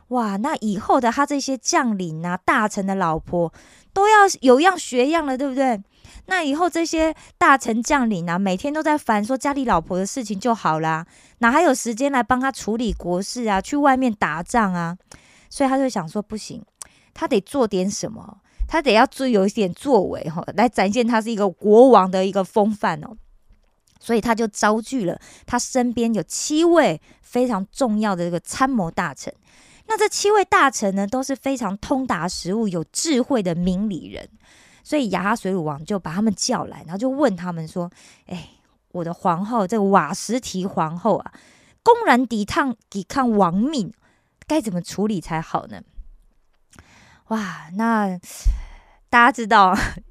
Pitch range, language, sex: 195-265 Hz, Korean, female